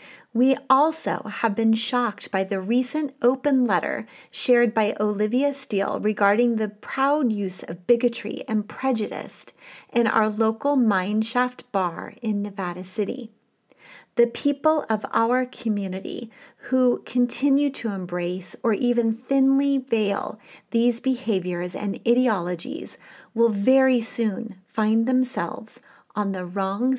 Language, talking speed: English, 120 wpm